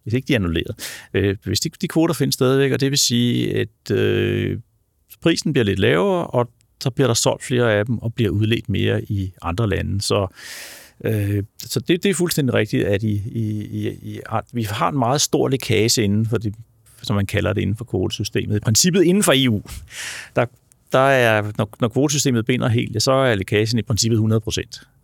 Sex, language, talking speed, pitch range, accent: male, Danish, 205 wpm, 105-130 Hz, native